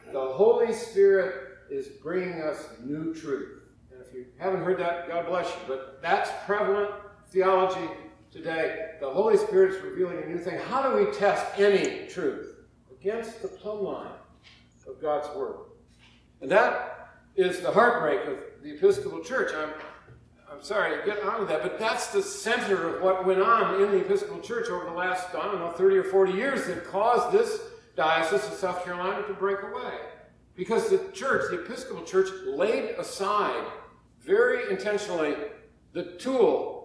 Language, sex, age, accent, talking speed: English, male, 60-79, American, 170 wpm